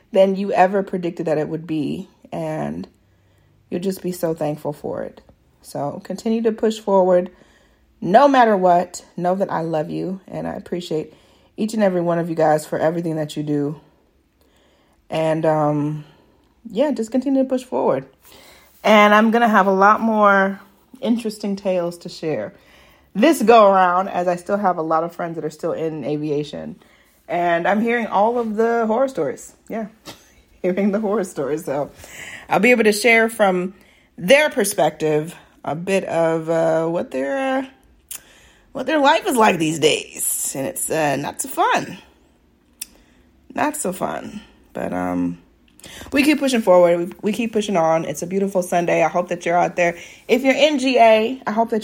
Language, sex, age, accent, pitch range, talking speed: English, female, 30-49, American, 160-220 Hz, 175 wpm